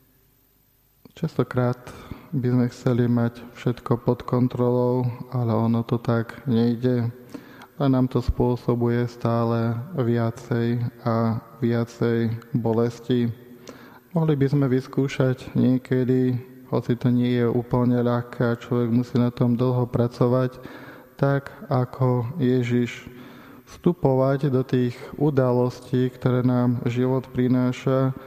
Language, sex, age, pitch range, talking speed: Slovak, male, 20-39, 120-130 Hz, 110 wpm